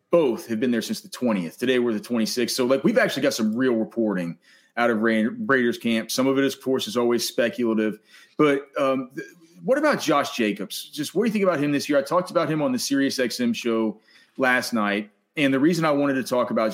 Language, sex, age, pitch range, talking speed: English, male, 30-49, 110-160 Hz, 235 wpm